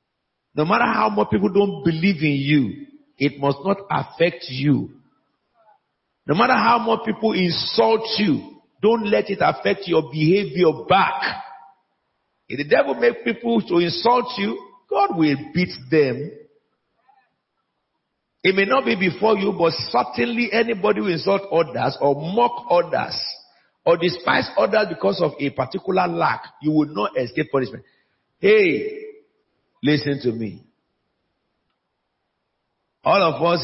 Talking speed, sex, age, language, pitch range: 135 wpm, male, 50-69, English, 145-230 Hz